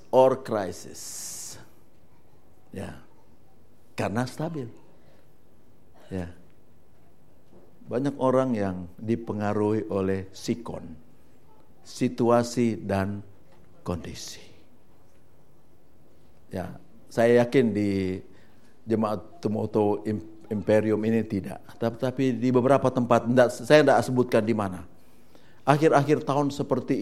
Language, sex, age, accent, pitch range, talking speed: Indonesian, male, 50-69, native, 110-170 Hz, 85 wpm